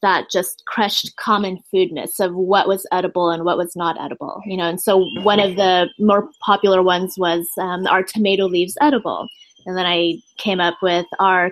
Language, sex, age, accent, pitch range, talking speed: English, female, 20-39, American, 180-225 Hz, 195 wpm